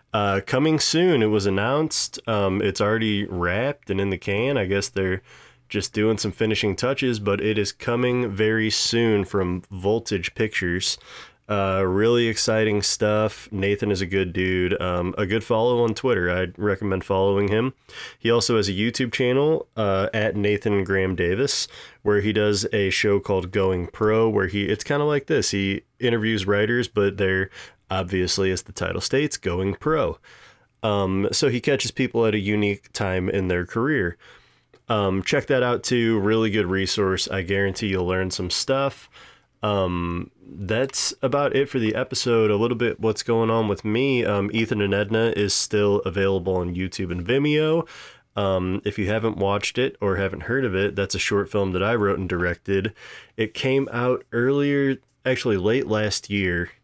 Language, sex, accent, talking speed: English, male, American, 175 wpm